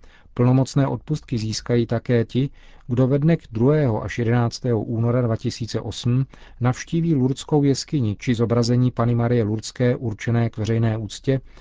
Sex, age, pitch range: male, 40-59, 110-130 Hz